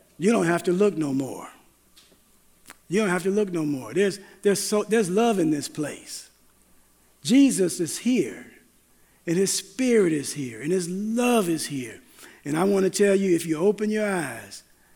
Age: 50-69